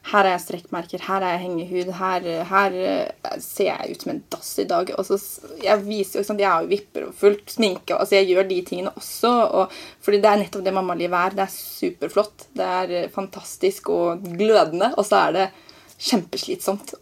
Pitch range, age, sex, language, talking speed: 185-210 Hz, 20-39, female, English, 220 wpm